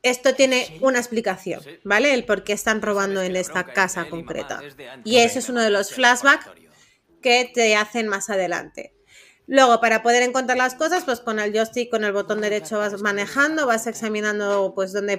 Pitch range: 195-240 Hz